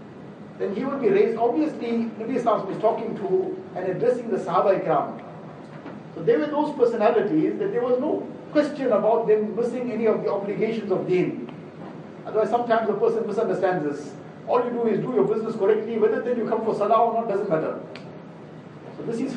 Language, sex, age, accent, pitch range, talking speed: English, male, 50-69, Indian, 195-245 Hz, 195 wpm